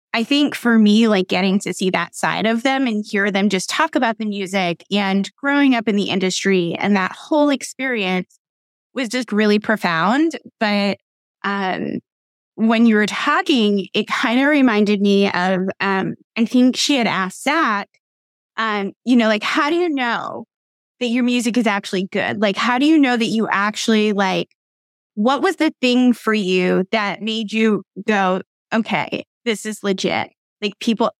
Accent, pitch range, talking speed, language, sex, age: American, 200-245 Hz, 175 wpm, English, female, 20-39